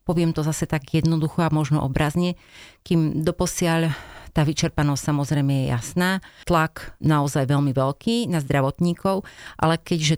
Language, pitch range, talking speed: Slovak, 140-160 Hz, 135 wpm